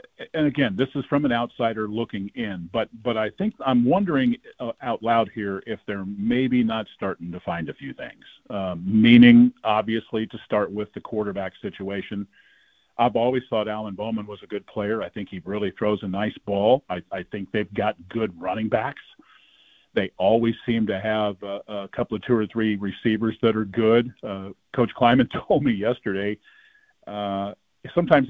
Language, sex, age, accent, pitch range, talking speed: English, male, 40-59, American, 105-135 Hz, 185 wpm